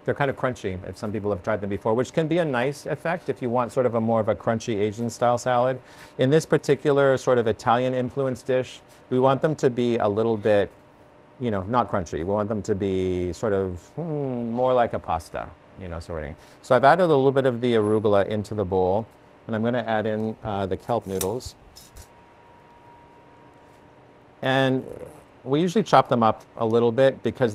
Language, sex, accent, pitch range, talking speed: English, male, American, 105-135 Hz, 210 wpm